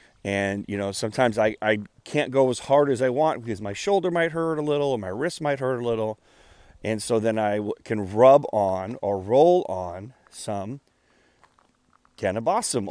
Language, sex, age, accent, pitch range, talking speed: English, male, 30-49, American, 100-135 Hz, 180 wpm